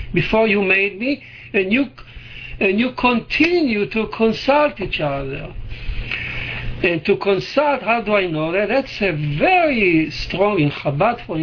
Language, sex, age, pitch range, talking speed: English, male, 60-79, 145-200 Hz, 145 wpm